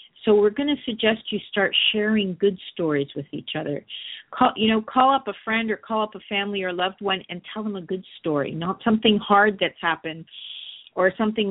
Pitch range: 175-205 Hz